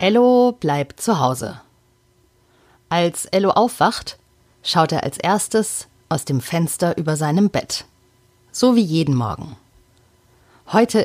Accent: German